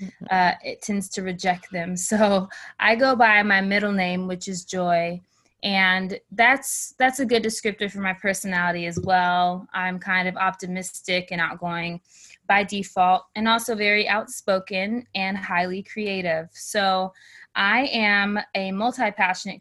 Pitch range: 190-220 Hz